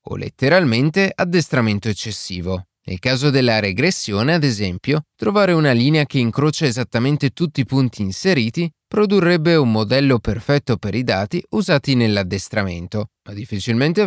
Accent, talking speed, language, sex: native, 130 wpm, Italian, male